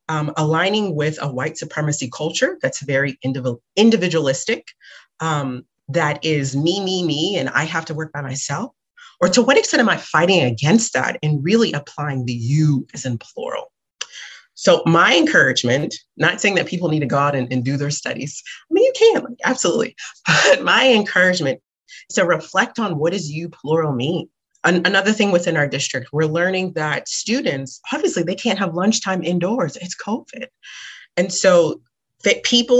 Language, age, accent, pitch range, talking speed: English, 30-49, American, 150-215 Hz, 170 wpm